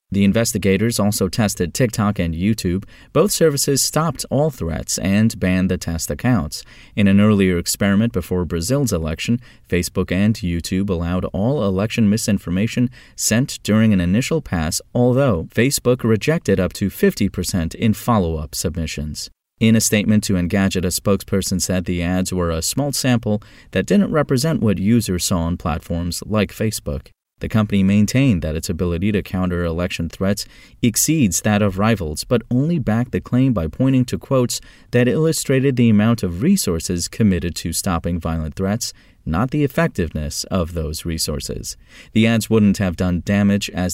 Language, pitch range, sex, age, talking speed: English, 90-120 Hz, male, 30-49, 160 wpm